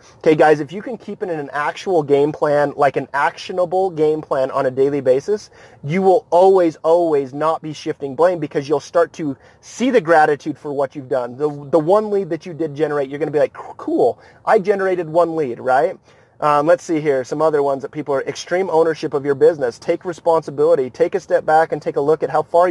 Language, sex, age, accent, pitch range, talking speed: English, male, 30-49, American, 145-185 Hz, 230 wpm